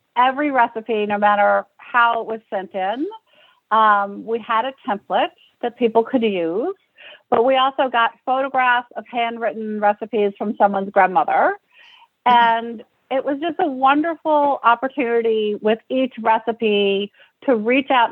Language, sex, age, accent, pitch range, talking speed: English, female, 50-69, American, 215-255 Hz, 140 wpm